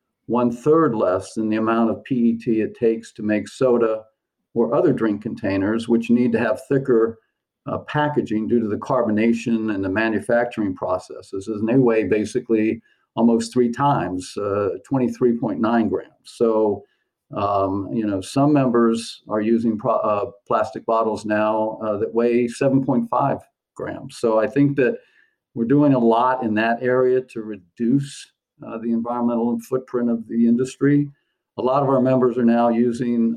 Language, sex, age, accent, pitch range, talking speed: English, male, 50-69, American, 110-125 Hz, 155 wpm